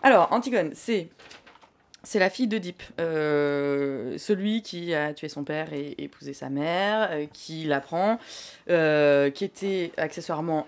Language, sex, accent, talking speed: French, female, French, 145 wpm